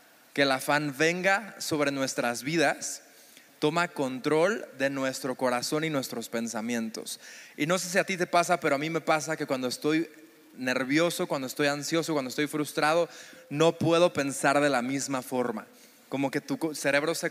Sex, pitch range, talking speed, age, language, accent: male, 140-165 Hz, 175 wpm, 20-39, Spanish, Mexican